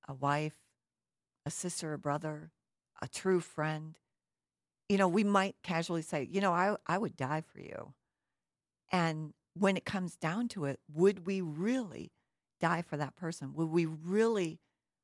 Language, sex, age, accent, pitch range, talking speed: English, female, 50-69, American, 145-175 Hz, 160 wpm